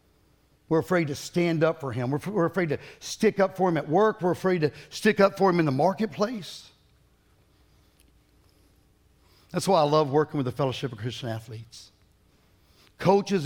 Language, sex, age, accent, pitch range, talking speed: English, male, 60-79, American, 105-160 Hz, 175 wpm